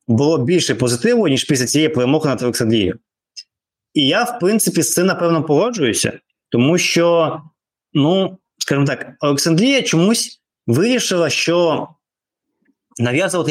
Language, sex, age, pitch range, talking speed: Ukrainian, male, 20-39, 130-190 Hz, 120 wpm